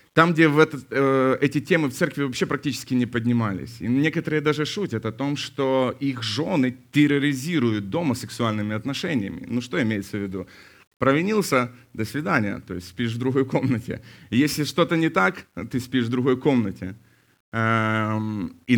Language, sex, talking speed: Ukrainian, male, 160 wpm